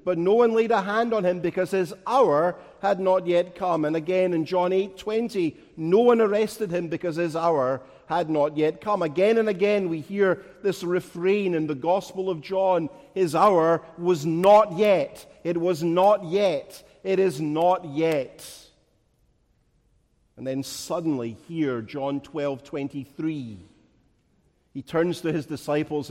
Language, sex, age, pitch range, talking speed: English, male, 50-69, 140-195 Hz, 160 wpm